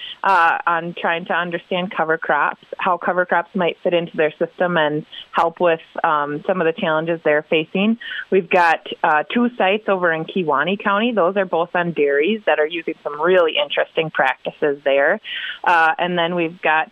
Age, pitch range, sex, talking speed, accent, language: 20-39, 160-215 Hz, female, 185 wpm, American, English